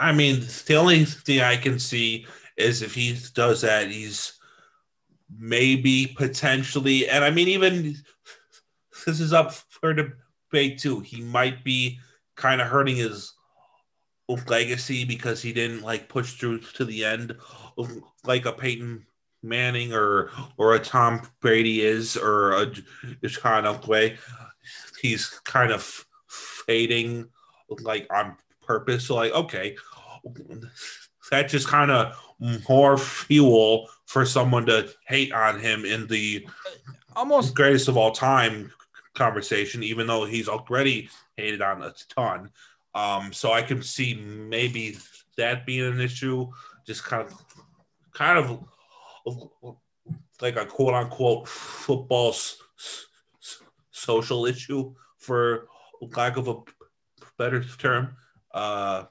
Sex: male